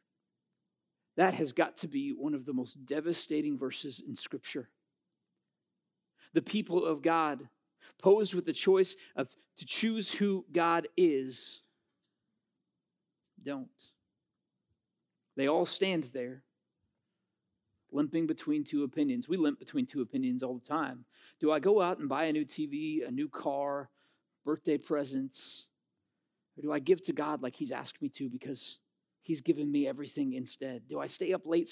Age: 40-59